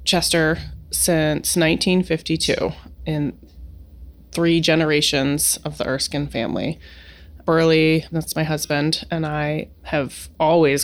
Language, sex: English, female